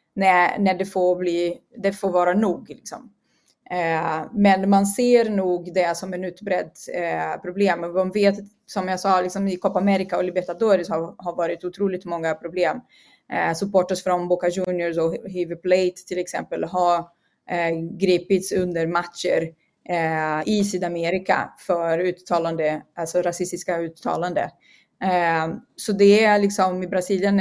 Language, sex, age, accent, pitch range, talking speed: Swedish, female, 30-49, native, 175-200 Hz, 150 wpm